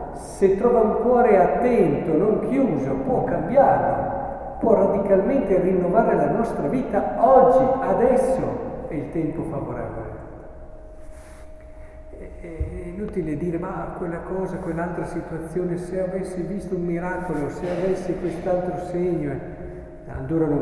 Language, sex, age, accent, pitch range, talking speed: Italian, male, 60-79, native, 140-185 Hz, 120 wpm